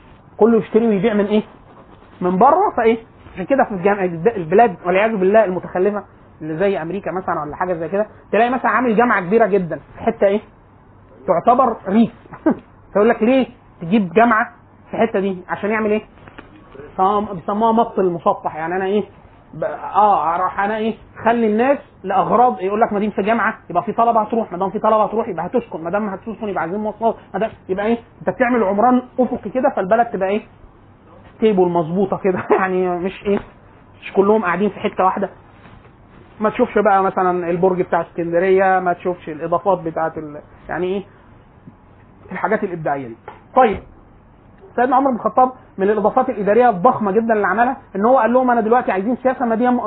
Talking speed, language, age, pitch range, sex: 175 wpm, Arabic, 30-49, 190-245 Hz, male